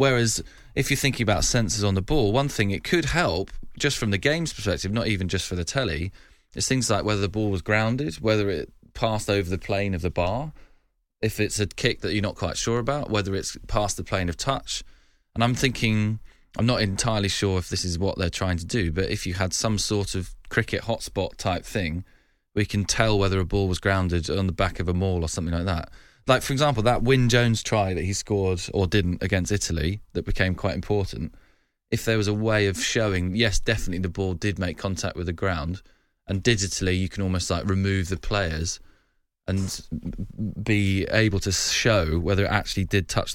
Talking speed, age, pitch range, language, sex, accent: 215 wpm, 20-39, 95-110 Hz, English, male, British